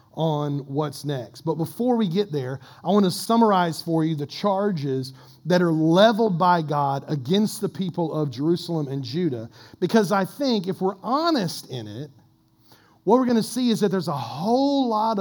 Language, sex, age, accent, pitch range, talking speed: English, male, 40-59, American, 130-180 Hz, 185 wpm